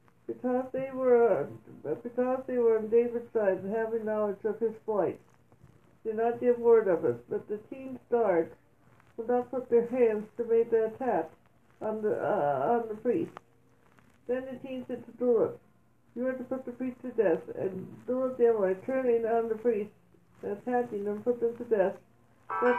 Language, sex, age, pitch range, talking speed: English, female, 60-79, 215-255 Hz, 185 wpm